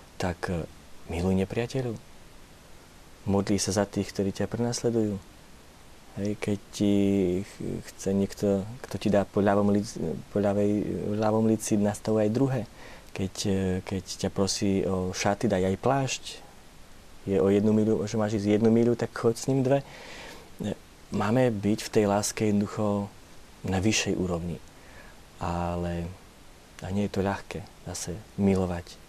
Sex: male